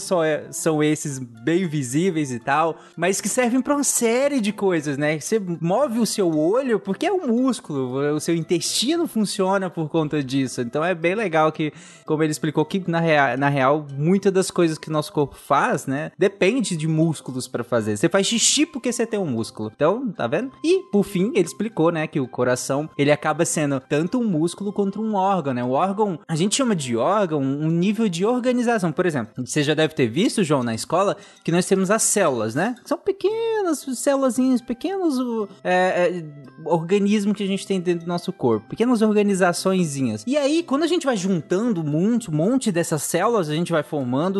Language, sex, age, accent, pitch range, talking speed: Portuguese, male, 20-39, Brazilian, 155-220 Hz, 195 wpm